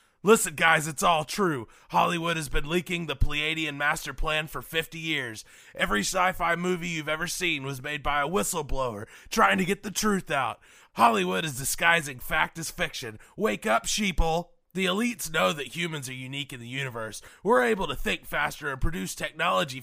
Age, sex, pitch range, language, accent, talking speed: 20-39, male, 135-175 Hz, English, American, 180 wpm